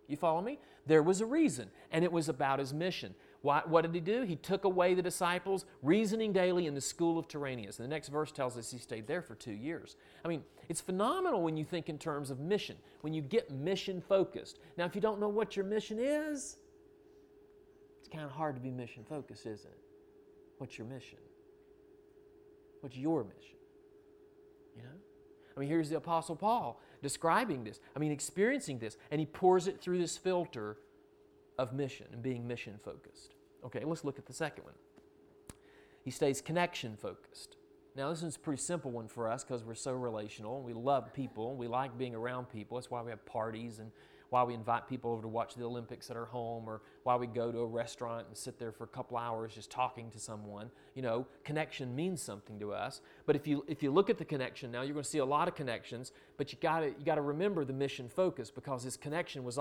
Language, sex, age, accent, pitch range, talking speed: English, male, 40-59, American, 125-185 Hz, 215 wpm